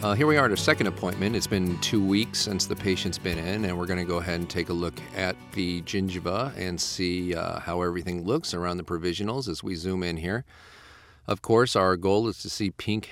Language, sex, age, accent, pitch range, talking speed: English, male, 40-59, American, 85-100 Hz, 240 wpm